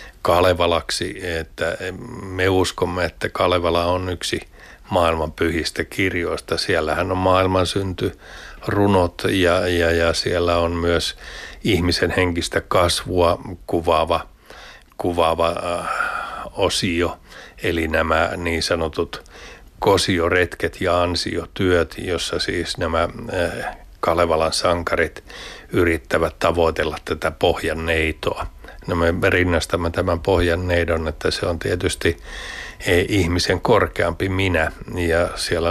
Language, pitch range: Finnish, 80-90 Hz